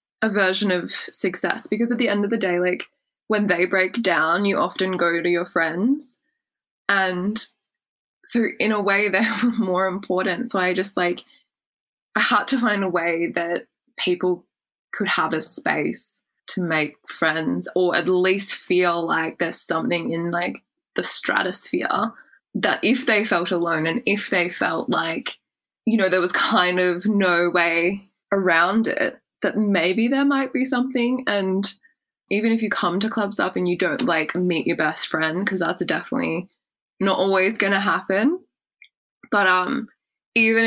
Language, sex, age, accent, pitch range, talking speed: English, female, 20-39, Australian, 180-230 Hz, 165 wpm